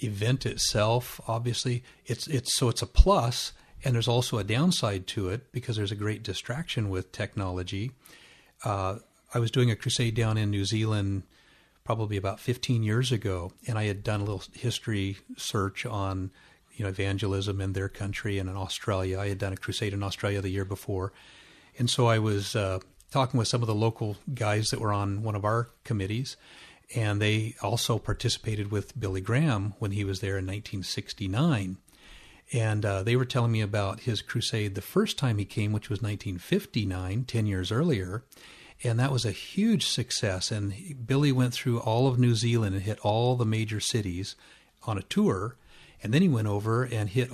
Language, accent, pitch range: English, American, 100-120 Hz